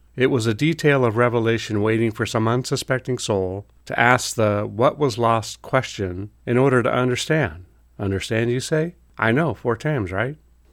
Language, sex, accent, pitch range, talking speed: English, male, American, 100-125 Hz, 170 wpm